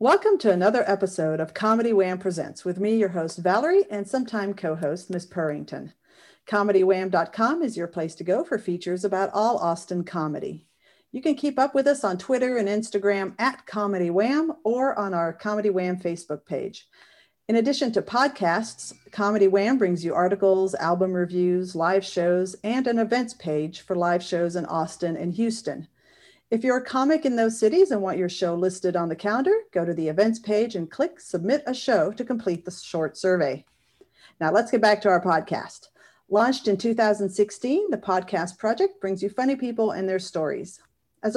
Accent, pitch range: American, 180-235 Hz